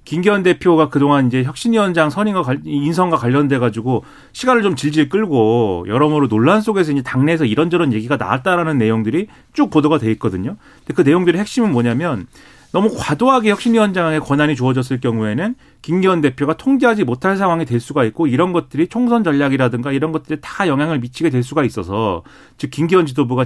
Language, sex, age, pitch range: Korean, male, 40-59, 125-180 Hz